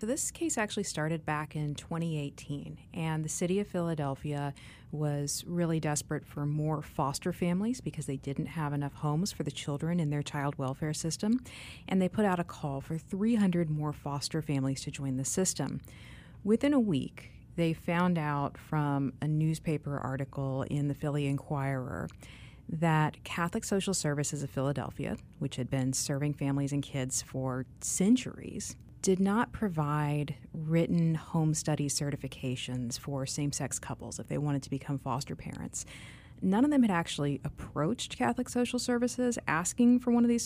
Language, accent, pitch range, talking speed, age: English, American, 140-170 Hz, 160 wpm, 40-59